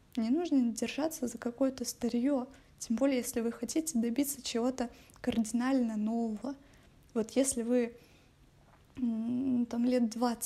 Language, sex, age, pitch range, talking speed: Russian, female, 20-39, 235-275 Hz, 115 wpm